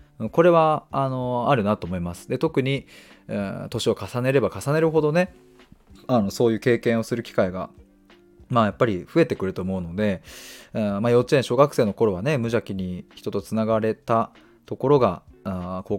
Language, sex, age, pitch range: Japanese, male, 20-39, 95-135 Hz